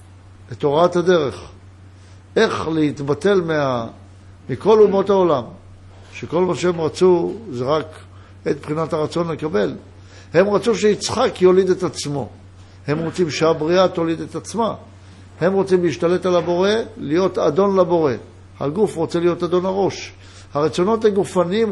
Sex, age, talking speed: male, 60-79, 120 wpm